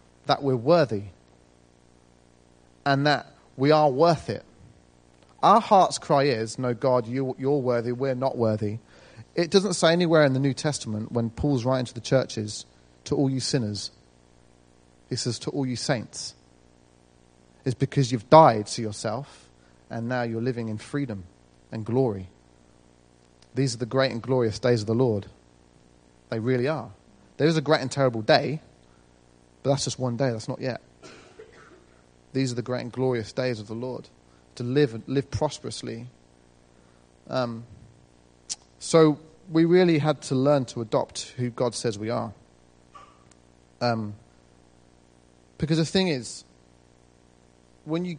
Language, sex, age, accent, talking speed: English, male, 30-49, British, 150 wpm